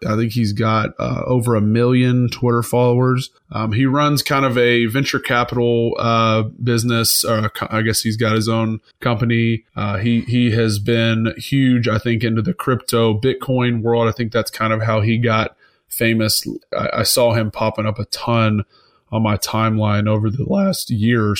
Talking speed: 185 wpm